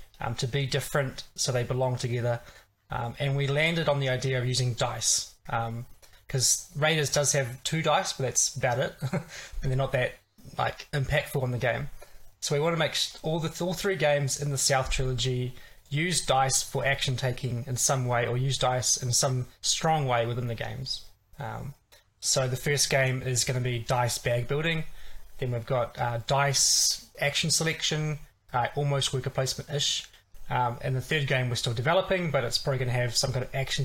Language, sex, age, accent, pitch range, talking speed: Portuguese, male, 20-39, Australian, 125-145 Hz, 200 wpm